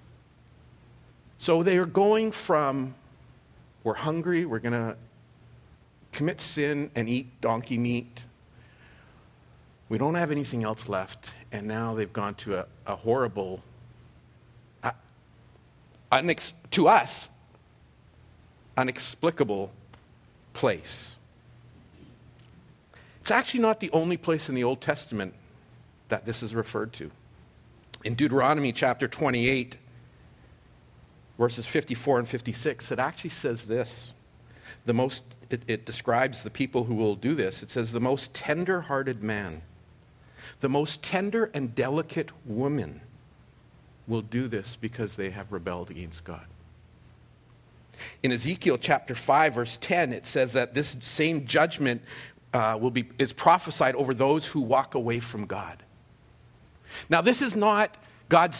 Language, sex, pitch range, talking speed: English, male, 115-150 Hz, 125 wpm